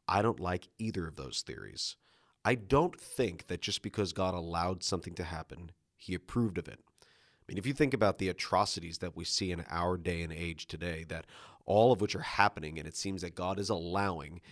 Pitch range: 85-105 Hz